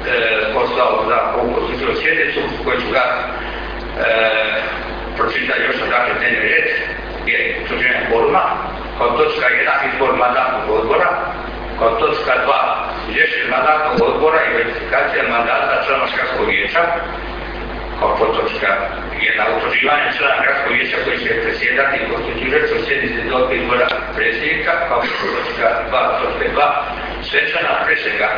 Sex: male